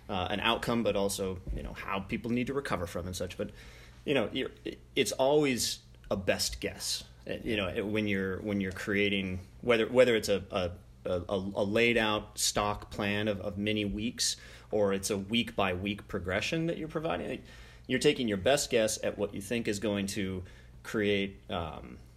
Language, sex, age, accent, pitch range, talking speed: English, male, 30-49, American, 95-110 Hz, 190 wpm